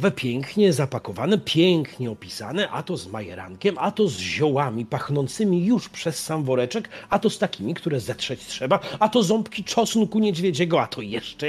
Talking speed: 165 wpm